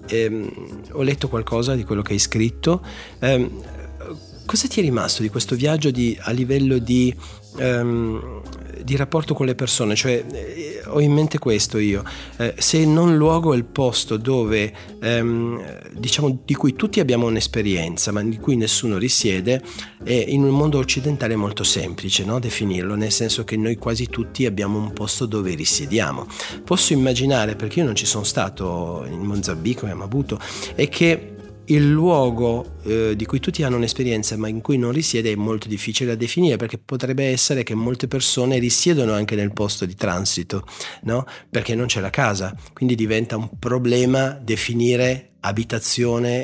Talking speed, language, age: 170 wpm, Italian, 40-59